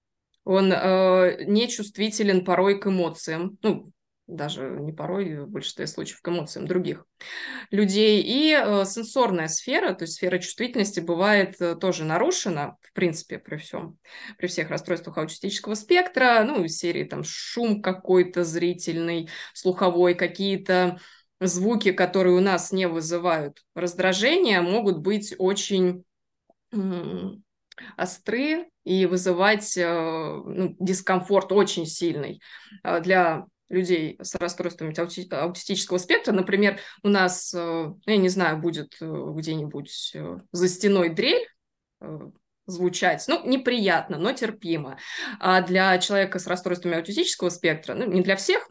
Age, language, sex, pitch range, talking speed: 20-39, Russian, female, 175-200 Hz, 120 wpm